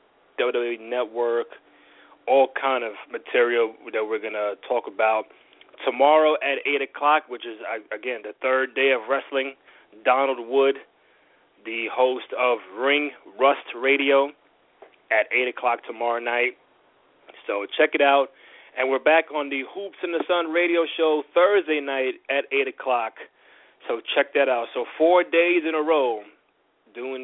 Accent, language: American, English